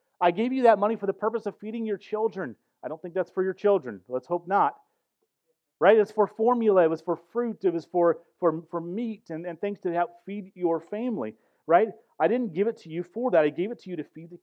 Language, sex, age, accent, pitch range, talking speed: English, male, 40-59, American, 145-200 Hz, 255 wpm